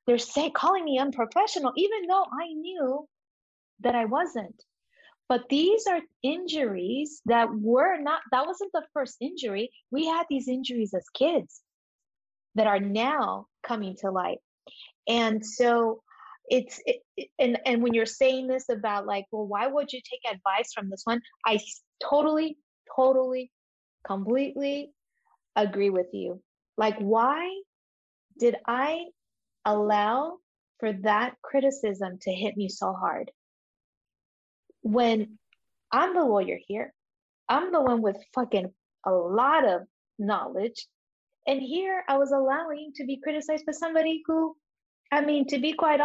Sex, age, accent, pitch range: female, 30-49, American, 225-305 Hz